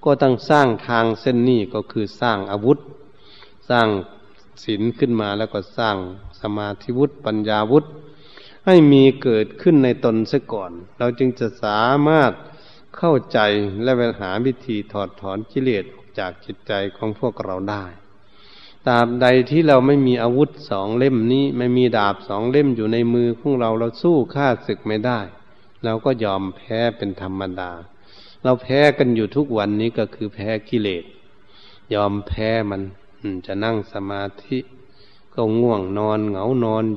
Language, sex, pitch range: Thai, male, 100-130 Hz